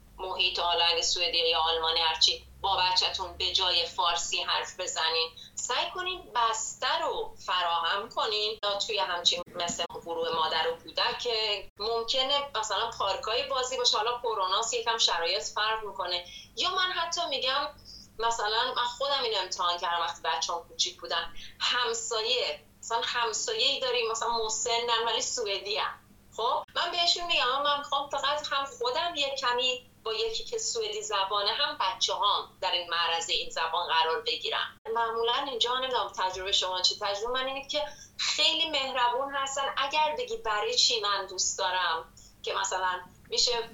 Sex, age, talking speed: female, 30-49, 150 wpm